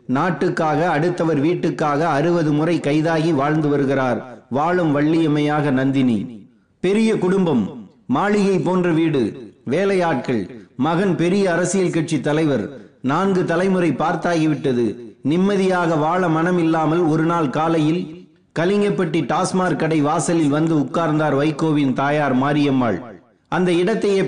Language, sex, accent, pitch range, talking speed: Tamil, male, native, 155-185 Hz, 90 wpm